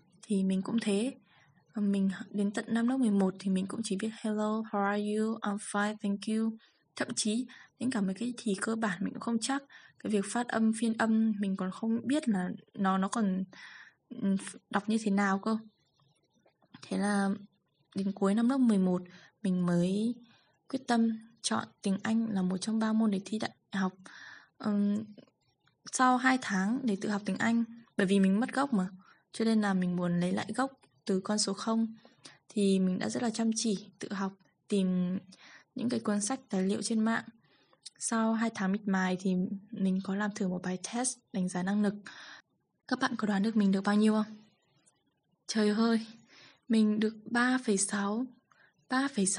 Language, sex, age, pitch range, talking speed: Vietnamese, female, 10-29, 195-230 Hz, 185 wpm